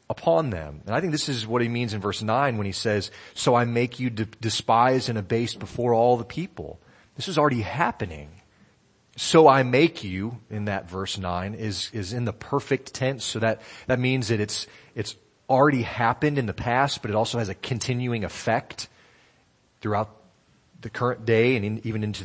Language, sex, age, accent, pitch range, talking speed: English, male, 30-49, American, 105-130 Hz, 195 wpm